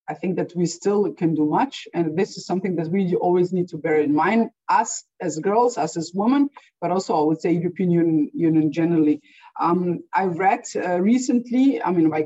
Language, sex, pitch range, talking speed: English, female, 165-215 Hz, 205 wpm